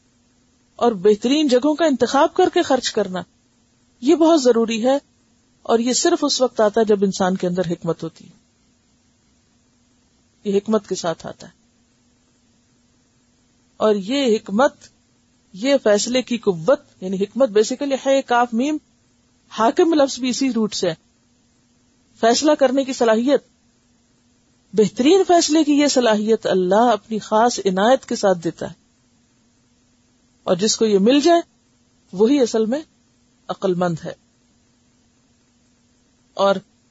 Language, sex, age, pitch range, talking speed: Urdu, female, 50-69, 160-265 Hz, 135 wpm